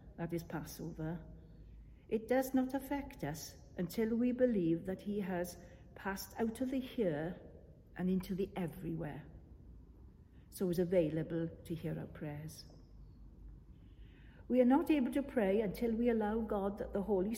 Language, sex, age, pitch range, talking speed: English, female, 60-79, 160-225 Hz, 145 wpm